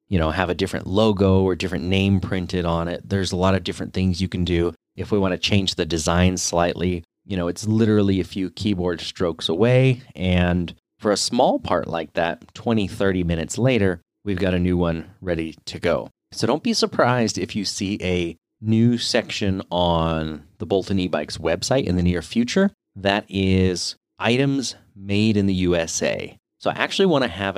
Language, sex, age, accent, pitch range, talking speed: English, male, 30-49, American, 90-110 Hz, 195 wpm